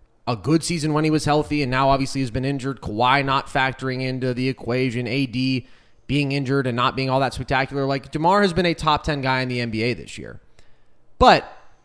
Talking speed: 215 wpm